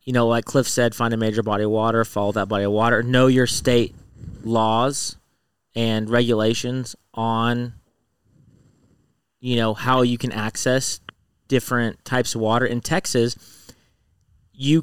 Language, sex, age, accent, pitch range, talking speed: English, male, 30-49, American, 105-120 Hz, 145 wpm